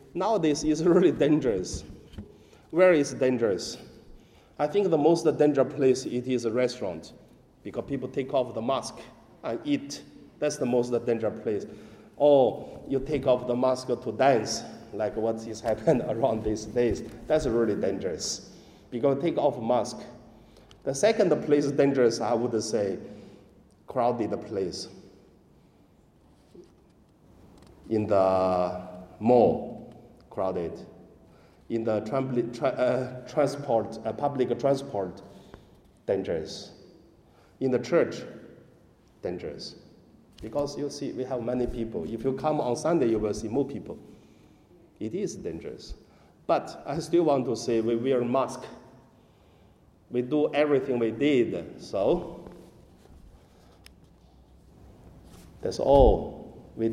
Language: Chinese